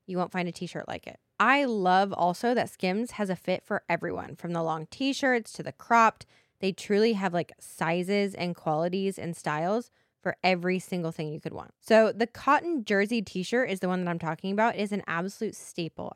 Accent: American